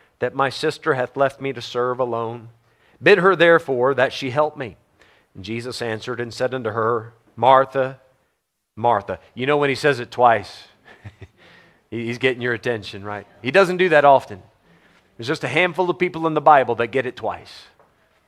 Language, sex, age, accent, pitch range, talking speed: English, male, 40-59, American, 110-145 Hz, 180 wpm